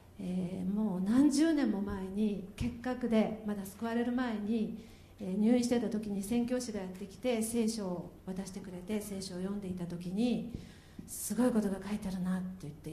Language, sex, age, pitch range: Japanese, female, 50-69, 185-245 Hz